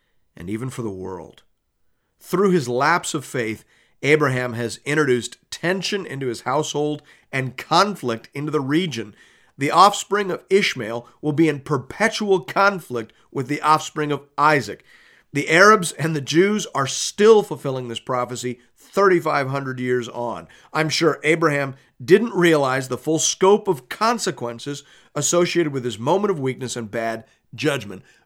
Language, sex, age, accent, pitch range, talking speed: English, male, 40-59, American, 125-185 Hz, 145 wpm